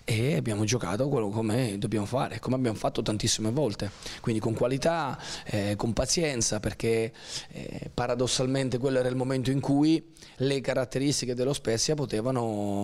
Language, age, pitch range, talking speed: Italian, 30-49, 110-140 Hz, 150 wpm